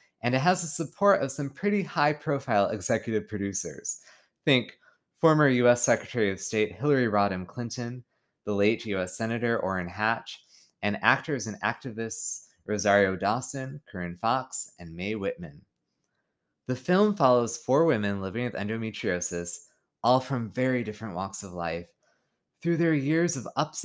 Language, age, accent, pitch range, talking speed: English, 20-39, American, 100-140 Hz, 145 wpm